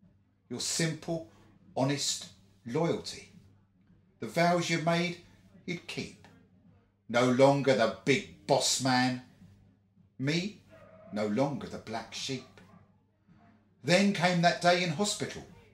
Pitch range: 100-155 Hz